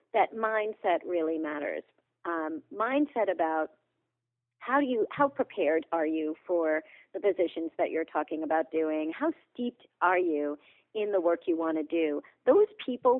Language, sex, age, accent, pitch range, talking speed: English, female, 40-59, American, 160-230 Hz, 155 wpm